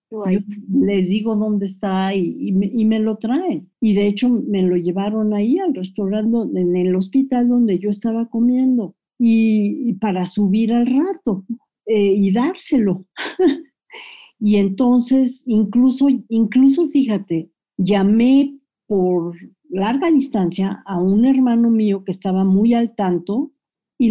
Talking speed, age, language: 140 wpm, 50-69, Spanish